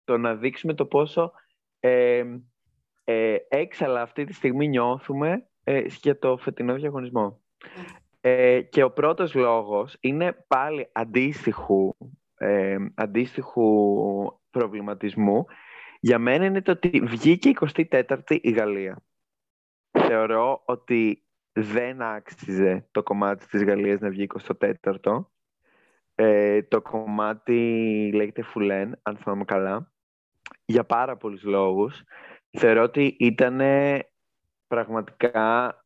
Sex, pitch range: male, 105-130 Hz